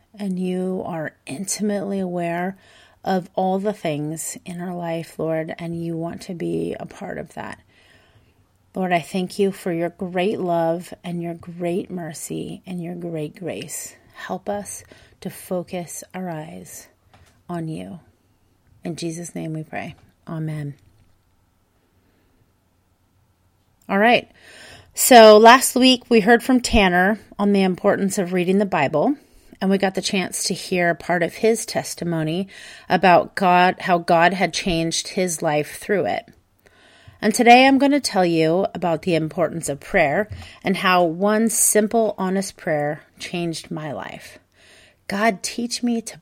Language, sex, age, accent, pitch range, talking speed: English, female, 30-49, American, 155-200 Hz, 150 wpm